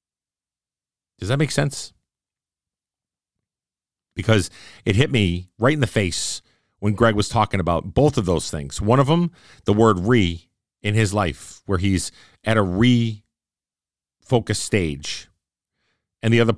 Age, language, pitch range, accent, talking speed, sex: 40-59, English, 90-115 Hz, American, 140 wpm, male